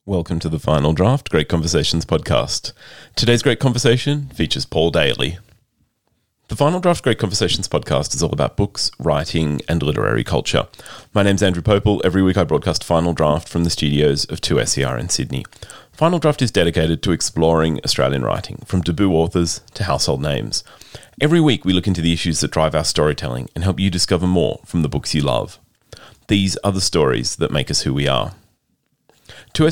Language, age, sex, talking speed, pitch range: English, 30-49, male, 185 wpm, 80-115 Hz